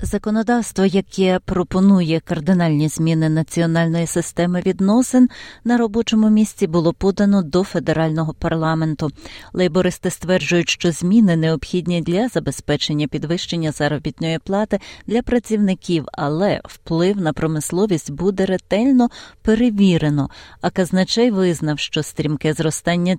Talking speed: 105 wpm